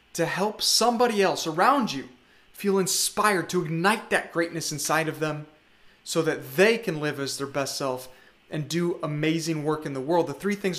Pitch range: 155-195 Hz